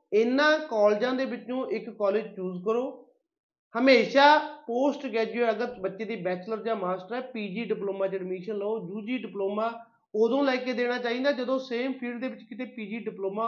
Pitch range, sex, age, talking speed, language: 205-245 Hz, male, 30-49, 170 wpm, Punjabi